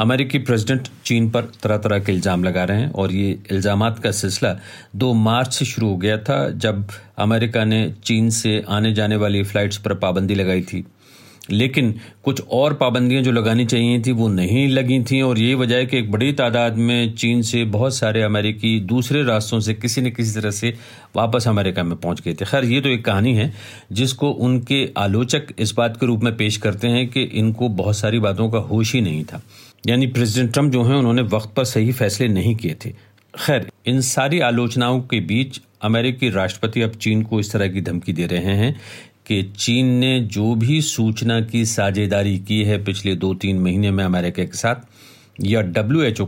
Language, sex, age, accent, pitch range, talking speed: Hindi, male, 50-69, native, 105-125 Hz, 200 wpm